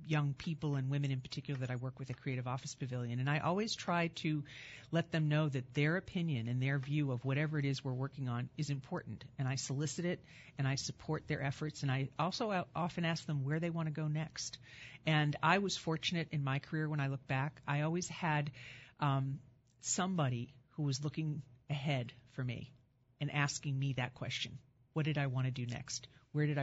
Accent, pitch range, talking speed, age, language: American, 130-155 Hz, 210 wpm, 50-69, English